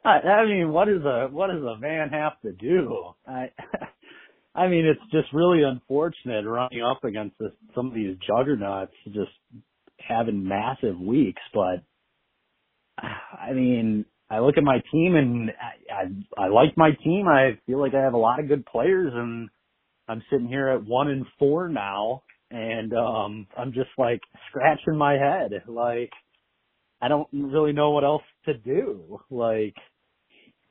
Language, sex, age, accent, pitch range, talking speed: English, male, 30-49, American, 105-145 Hz, 160 wpm